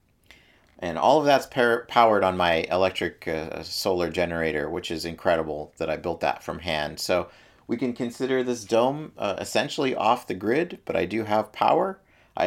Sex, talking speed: male, 180 wpm